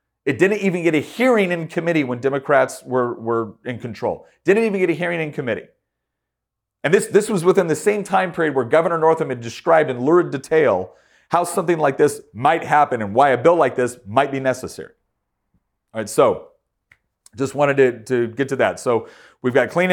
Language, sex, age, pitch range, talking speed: English, male, 30-49, 125-160 Hz, 200 wpm